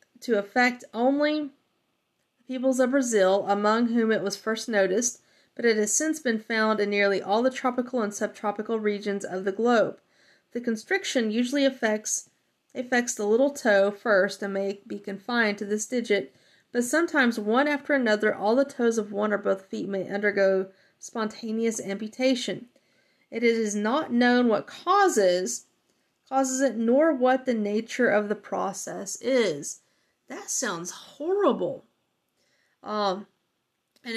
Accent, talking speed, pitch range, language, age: American, 150 wpm, 205-260 Hz, English, 30-49